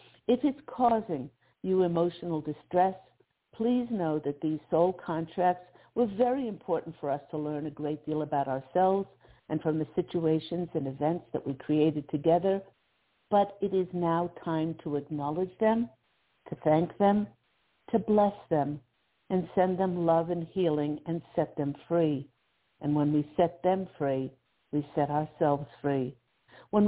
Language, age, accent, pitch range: English, 60-79, American, 150-190 Hz